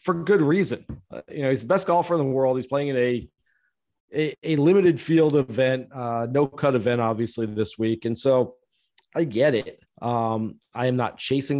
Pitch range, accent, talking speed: 115-150 Hz, American, 200 wpm